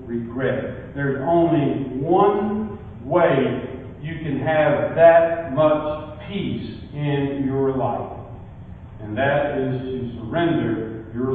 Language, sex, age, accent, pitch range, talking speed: English, male, 50-69, American, 115-140 Hz, 105 wpm